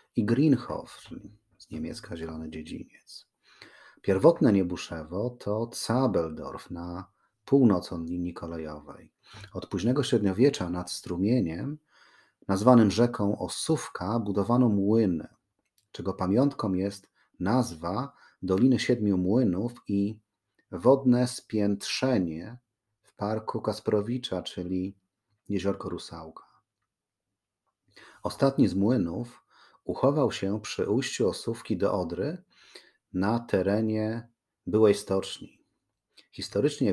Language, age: Polish, 40-59